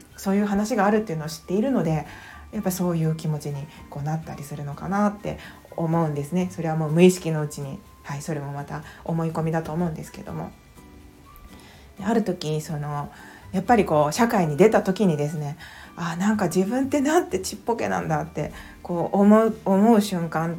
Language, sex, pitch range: Japanese, female, 160-205 Hz